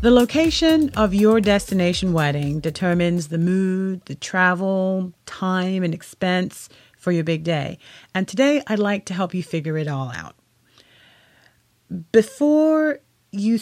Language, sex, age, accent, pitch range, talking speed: English, female, 40-59, American, 145-190 Hz, 135 wpm